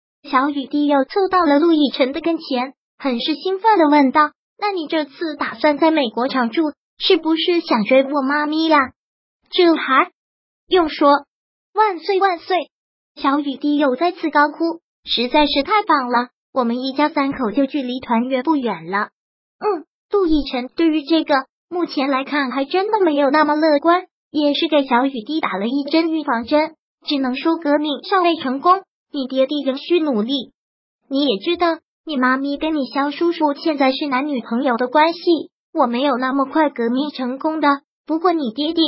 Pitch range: 270-325 Hz